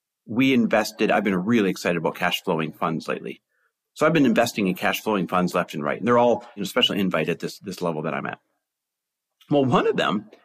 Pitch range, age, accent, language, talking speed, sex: 105-145 Hz, 40-59, American, English, 220 wpm, male